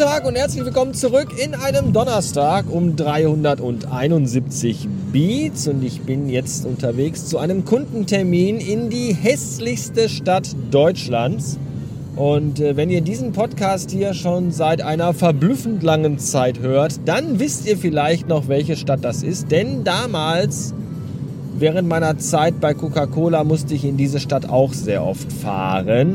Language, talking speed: German, 145 wpm